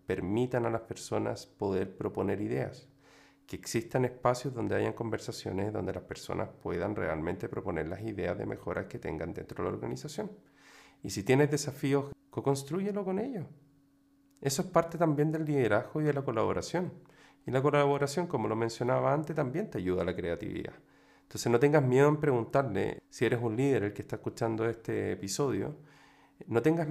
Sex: male